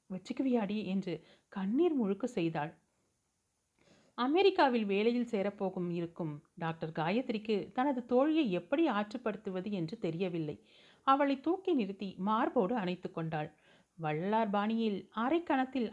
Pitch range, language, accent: 180-240 Hz, Tamil, native